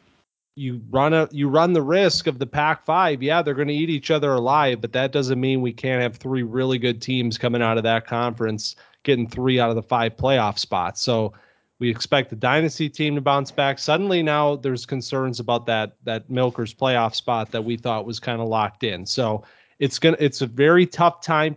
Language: English